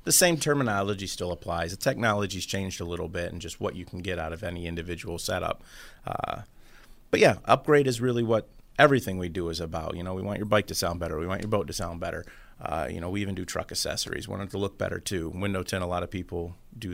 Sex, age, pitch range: male, 30-49, 85-105 Hz